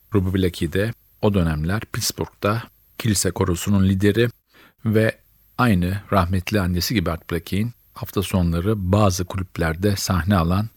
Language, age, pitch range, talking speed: Turkish, 50-69, 95-110 Hz, 125 wpm